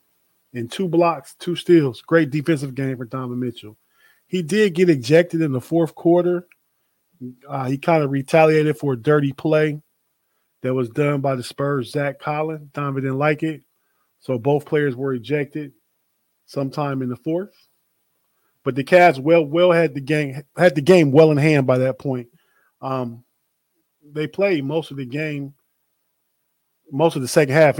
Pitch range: 130-160 Hz